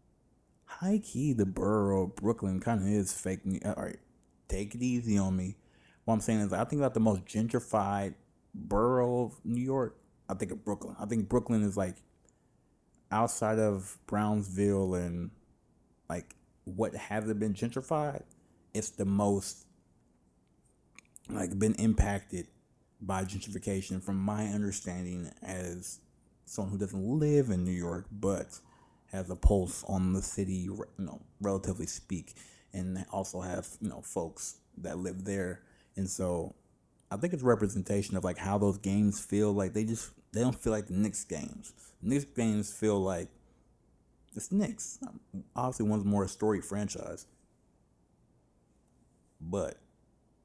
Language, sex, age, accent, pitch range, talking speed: English, male, 30-49, American, 95-110 Hz, 150 wpm